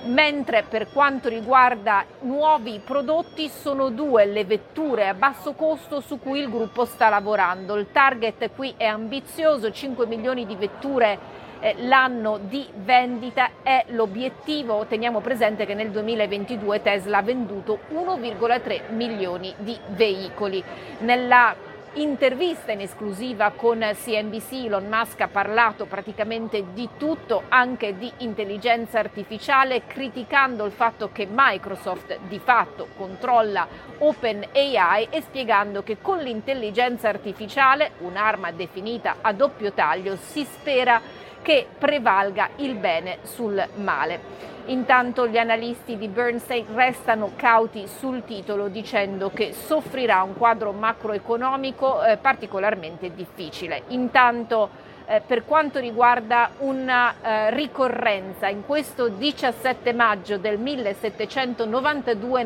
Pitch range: 215-265 Hz